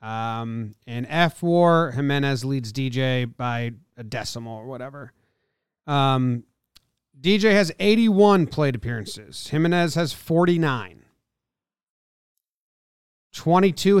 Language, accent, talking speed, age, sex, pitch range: English, American, 95 wpm, 30-49, male, 120-170 Hz